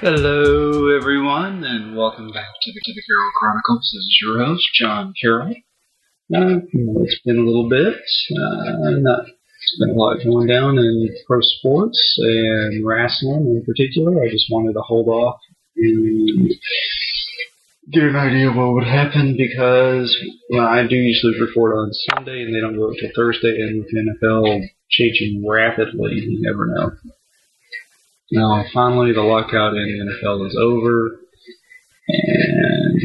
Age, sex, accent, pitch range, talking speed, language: 30-49, male, American, 115-145 Hz, 150 wpm, English